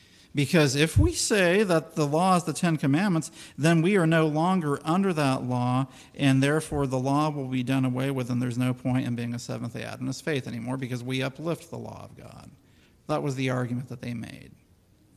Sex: male